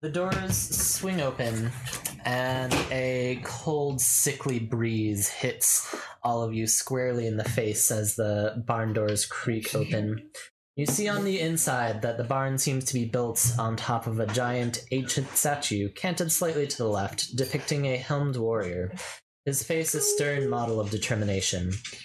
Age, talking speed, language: 20-39, 160 wpm, English